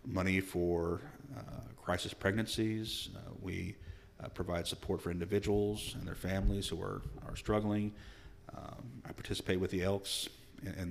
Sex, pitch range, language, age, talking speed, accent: male, 90-100 Hz, English, 40-59, 145 wpm, American